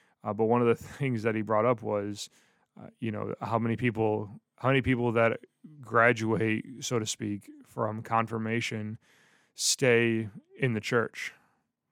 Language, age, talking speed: English, 20-39, 155 wpm